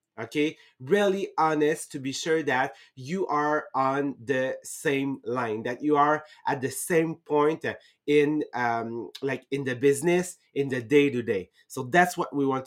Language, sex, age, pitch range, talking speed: English, male, 30-49, 140-180 Hz, 170 wpm